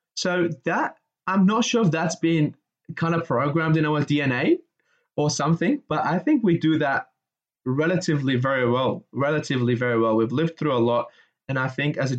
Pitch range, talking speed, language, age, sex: 125-150 Hz, 185 wpm, English, 20-39, male